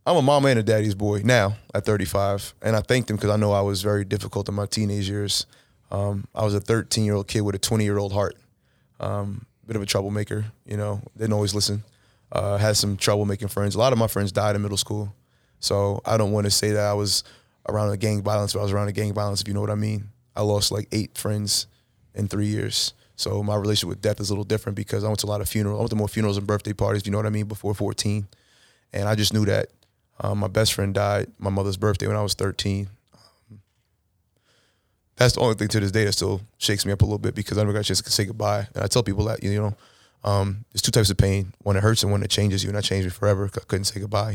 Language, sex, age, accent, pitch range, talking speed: English, male, 20-39, American, 100-110 Hz, 265 wpm